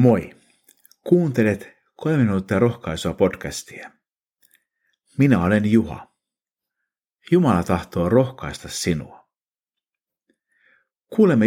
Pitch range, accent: 85-135 Hz, native